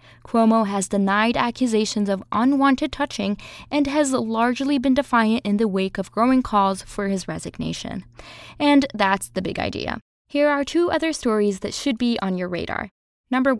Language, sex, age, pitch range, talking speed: English, female, 20-39, 200-255 Hz, 170 wpm